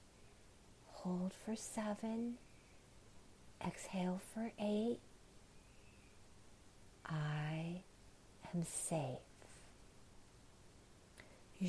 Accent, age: American, 50-69